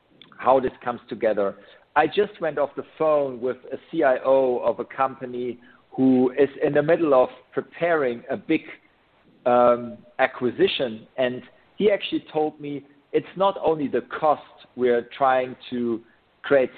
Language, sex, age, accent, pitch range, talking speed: English, male, 50-69, German, 125-145 Hz, 145 wpm